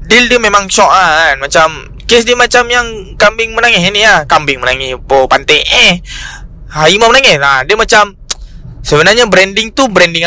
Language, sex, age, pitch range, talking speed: Malay, male, 20-39, 150-205 Hz, 170 wpm